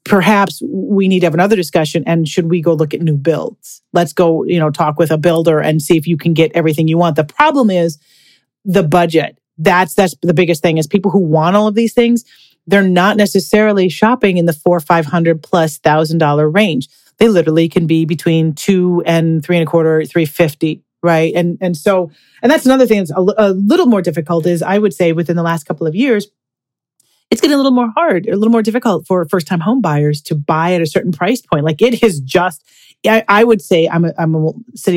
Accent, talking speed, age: American, 230 wpm, 40-59